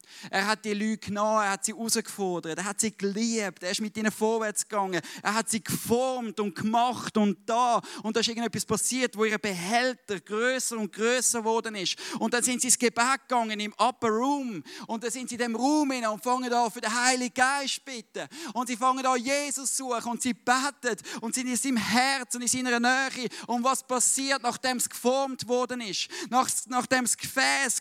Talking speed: 205 wpm